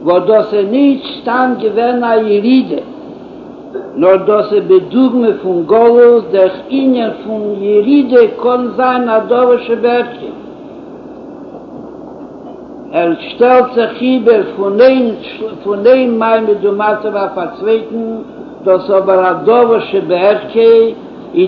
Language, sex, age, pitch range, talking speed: Hebrew, male, 60-79, 220-255 Hz, 80 wpm